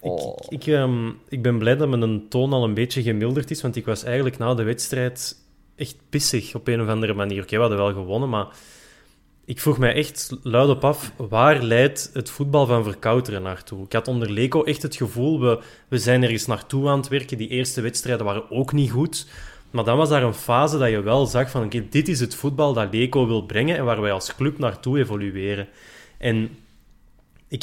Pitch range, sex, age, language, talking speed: 110-140 Hz, male, 20-39, Dutch, 225 wpm